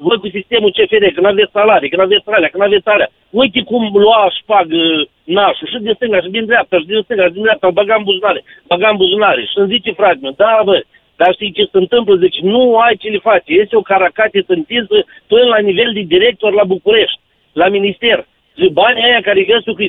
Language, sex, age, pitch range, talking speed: Romanian, male, 50-69, 190-255 Hz, 210 wpm